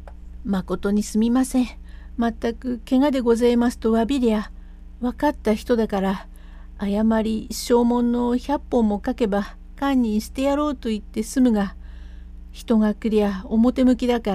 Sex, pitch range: female, 165-245 Hz